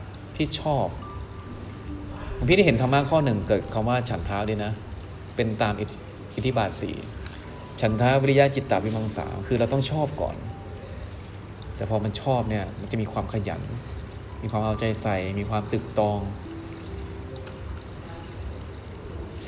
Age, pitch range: 20-39, 100-120 Hz